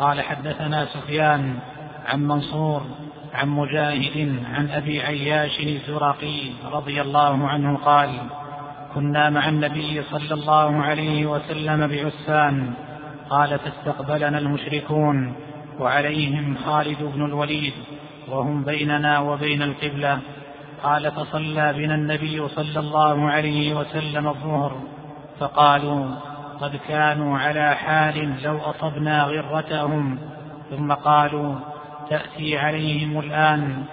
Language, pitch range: Arabic, 145-150 Hz